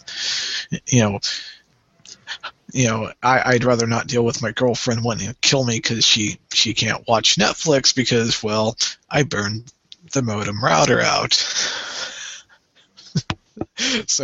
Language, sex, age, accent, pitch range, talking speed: English, male, 50-69, American, 120-140 Hz, 130 wpm